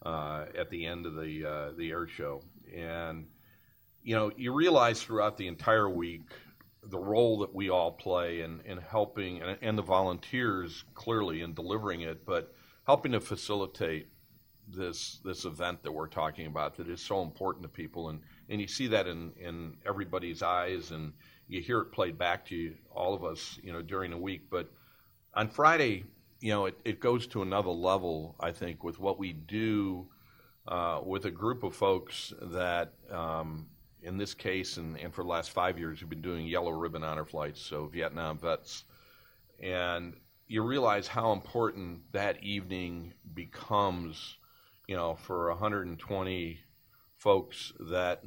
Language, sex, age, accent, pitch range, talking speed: English, male, 50-69, American, 85-100 Hz, 170 wpm